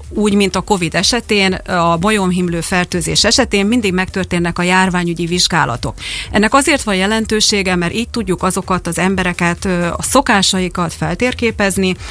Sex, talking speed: female, 135 wpm